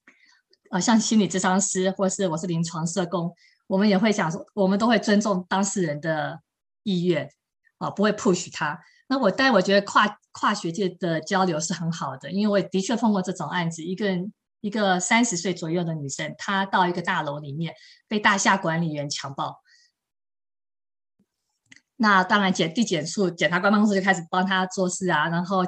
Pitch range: 170-215 Hz